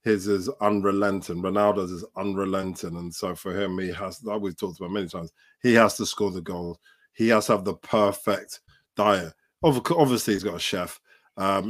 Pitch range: 95-120 Hz